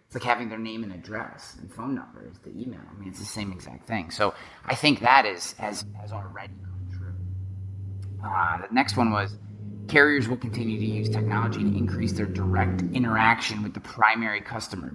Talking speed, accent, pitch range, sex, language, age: 190 wpm, American, 95-115 Hz, male, English, 30-49